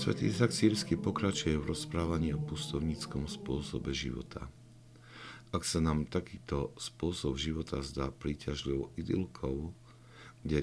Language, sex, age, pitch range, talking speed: Slovak, male, 50-69, 70-85 Hz, 115 wpm